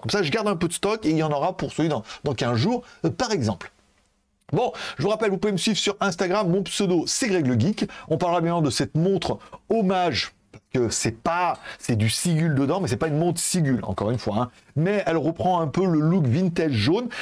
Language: French